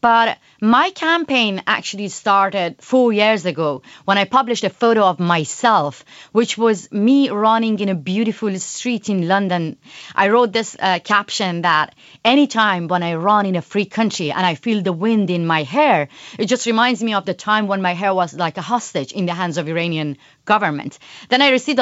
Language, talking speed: English, 195 wpm